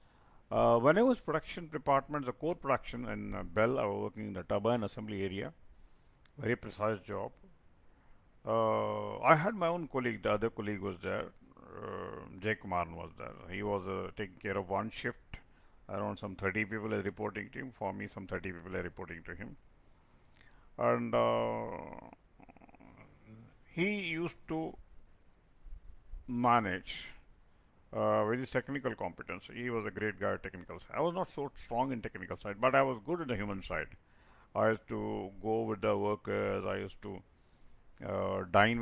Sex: male